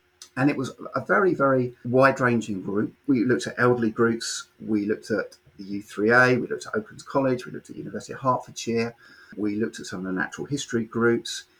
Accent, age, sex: British, 40-59, male